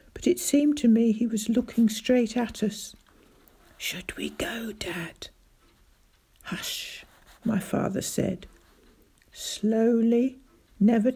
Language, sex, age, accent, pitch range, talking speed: English, female, 60-79, British, 205-240 Hz, 110 wpm